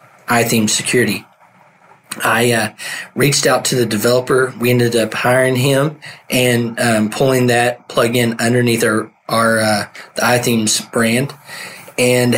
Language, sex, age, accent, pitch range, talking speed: English, male, 20-39, American, 115-130 Hz, 130 wpm